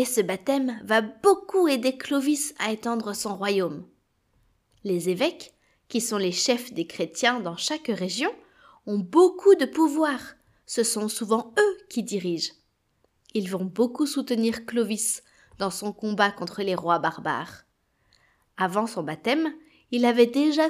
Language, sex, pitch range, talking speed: French, female, 190-275 Hz, 145 wpm